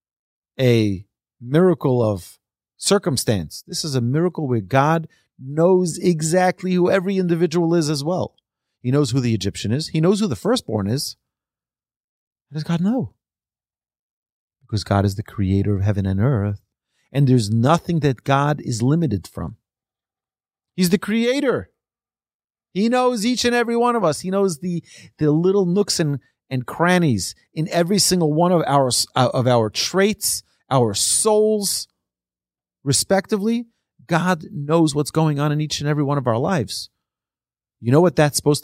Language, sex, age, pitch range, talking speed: English, male, 30-49, 110-180 Hz, 155 wpm